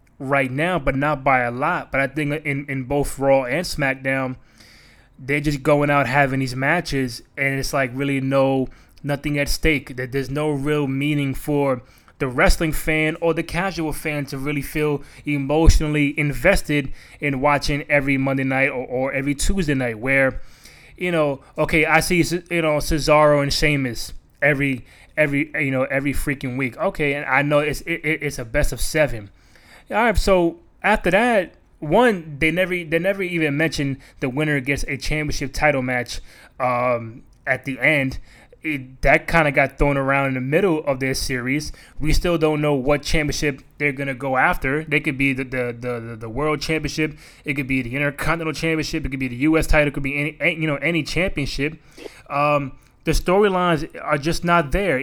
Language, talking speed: English, 190 wpm